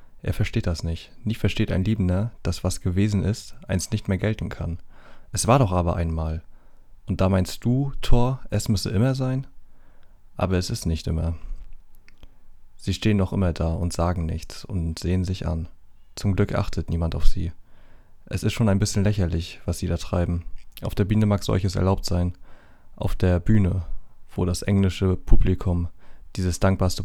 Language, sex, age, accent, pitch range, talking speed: German, male, 30-49, German, 85-105 Hz, 175 wpm